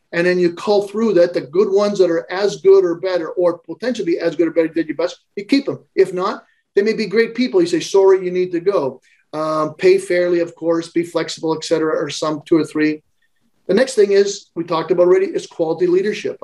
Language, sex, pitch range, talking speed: English, male, 160-205 Hz, 240 wpm